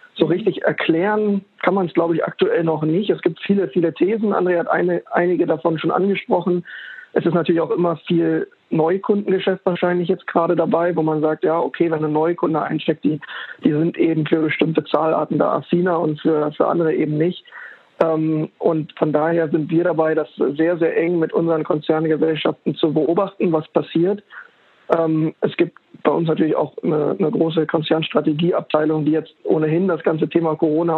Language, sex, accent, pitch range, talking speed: German, male, German, 160-175 Hz, 180 wpm